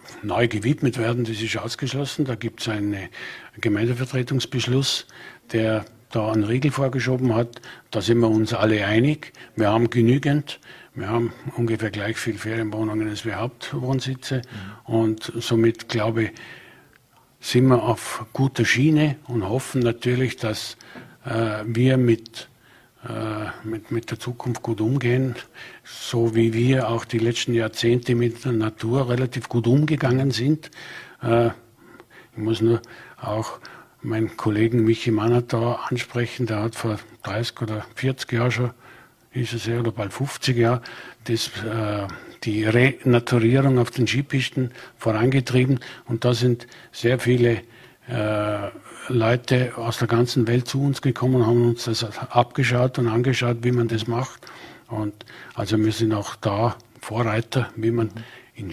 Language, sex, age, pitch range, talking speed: German, male, 50-69, 110-125 Hz, 135 wpm